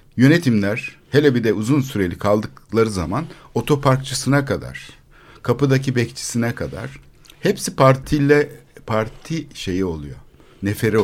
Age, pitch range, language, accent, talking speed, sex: 60-79, 100-140 Hz, Turkish, native, 105 wpm, male